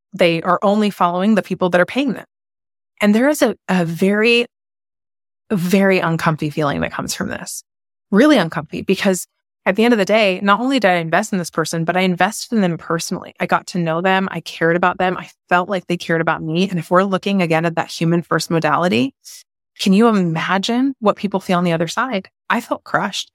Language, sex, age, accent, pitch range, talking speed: English, female, 20-39, American, 170-210 Hz, 220 wpm